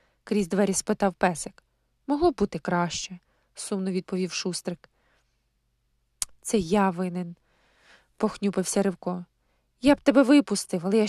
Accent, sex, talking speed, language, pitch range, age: native, female, 120 wpm, Ukrainian, 185-245 Hz, 20-39